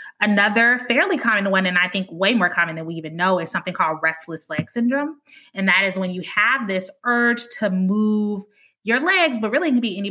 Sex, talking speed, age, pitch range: female, 225 wpm, 20-39, 180-235 Hz